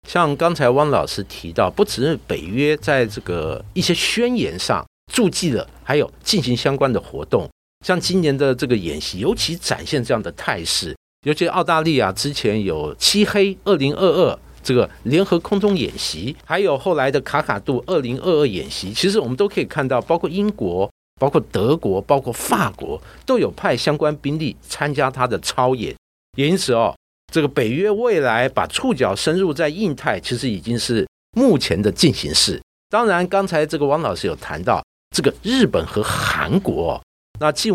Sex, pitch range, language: male, 125-190 Hz, Chinese